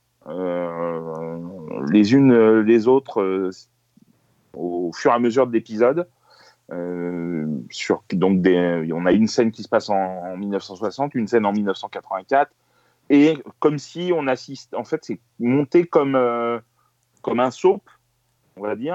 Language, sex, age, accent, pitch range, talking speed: French, male, 30-49, French, 100-135 Hz, 160 wpm